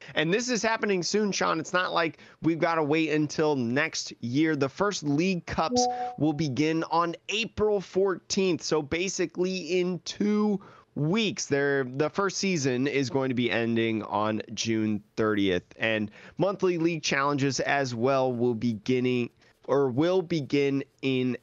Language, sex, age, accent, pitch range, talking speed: English, male, 20-39, American, 125-165 Hz, 150 wpm